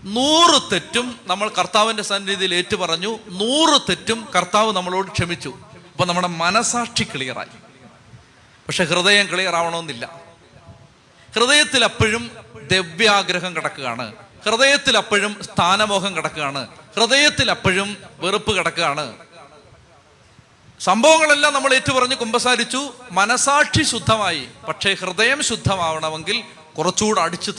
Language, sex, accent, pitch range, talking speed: Malayalam, male, native, 165-230 Hz, 85 wpm